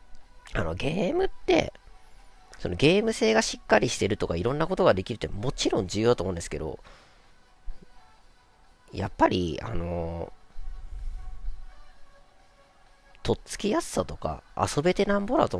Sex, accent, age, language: female, native, 40-59, Japanese